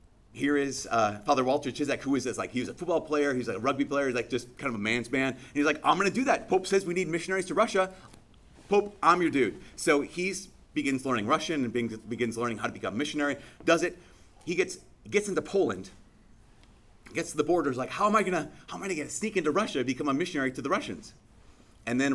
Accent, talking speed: American, 255 wpm